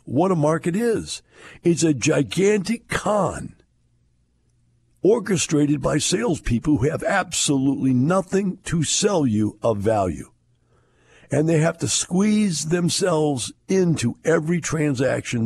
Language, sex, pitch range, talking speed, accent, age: English, male, 95-150 Hz, 115 wpm, American, 60-79